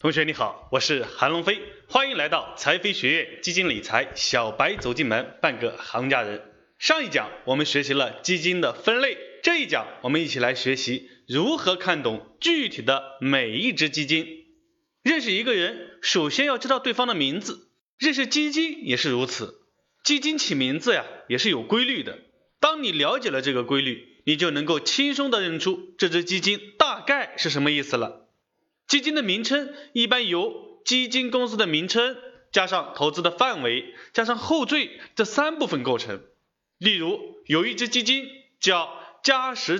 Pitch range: 180-290 Hz